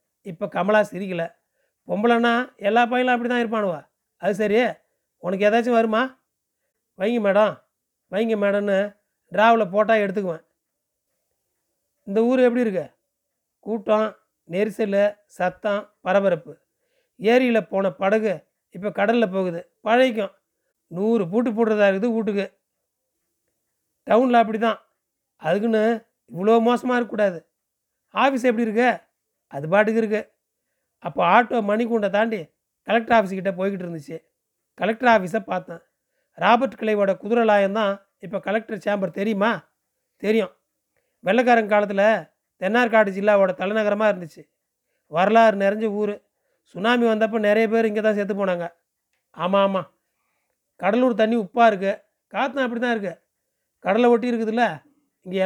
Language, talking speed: Tamil, 115 wpm